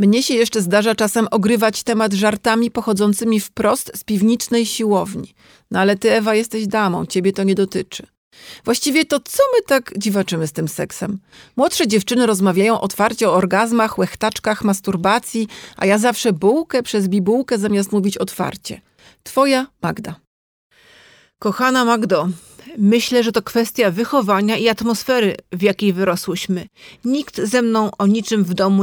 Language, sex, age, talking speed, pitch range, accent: Polish, female, 40-59, 145 wpm, 195-230 Hz, native